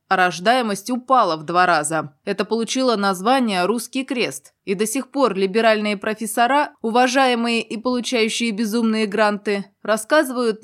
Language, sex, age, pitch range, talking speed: Russian, female, 20-39, 195-235 Hz, 130 wpm